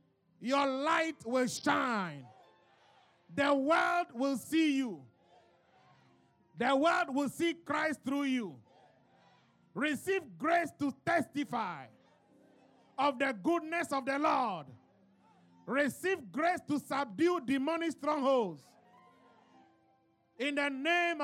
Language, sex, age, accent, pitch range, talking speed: English, male, 50-69, Nigerian, 235-335 Hz, 100 wpm